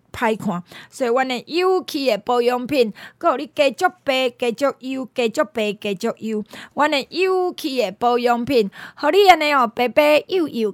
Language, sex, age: Chinese, female, 20-39